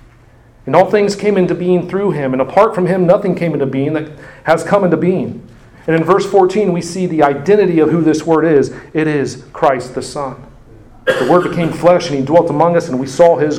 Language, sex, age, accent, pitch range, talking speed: English, male, 40-59, American, 145-195 Hz, 230 wpm